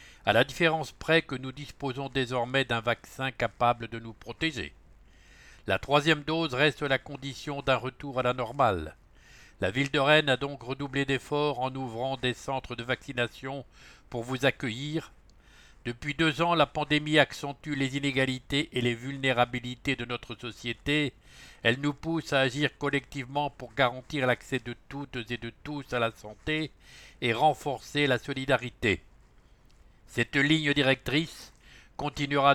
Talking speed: 150 wpm